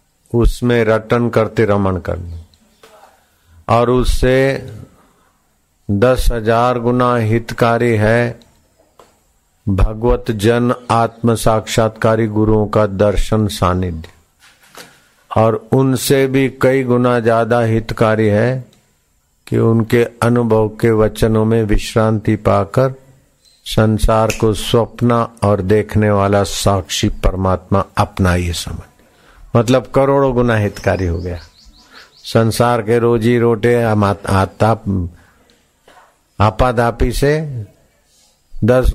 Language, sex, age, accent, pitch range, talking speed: Hindi, male, 50-69, native, 100-120 Hz, 90 wpm